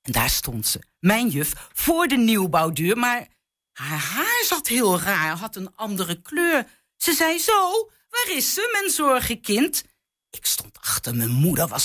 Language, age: Dutch, 50-69